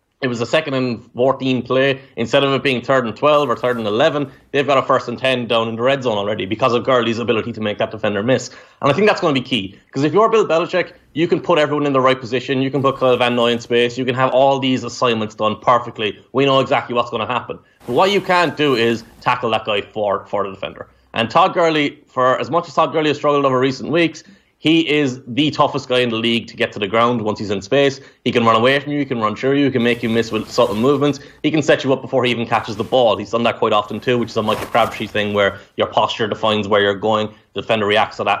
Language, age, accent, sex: English, 30-49, Irish, male